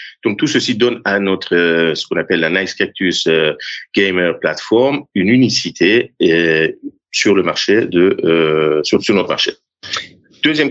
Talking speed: 165 wpm